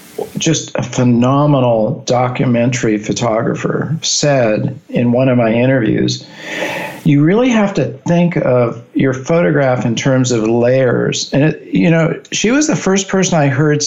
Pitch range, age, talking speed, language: 125-155 Hz, 50-69, 145 wpm, English